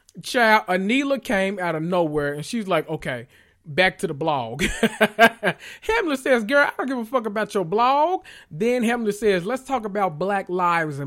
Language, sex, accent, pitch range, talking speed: English, male, American, 145-200 Hz, 180 wpm